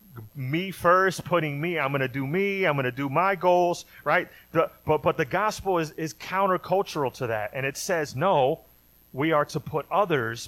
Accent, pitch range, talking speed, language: American, 135-195 Hz, 200 wpm, English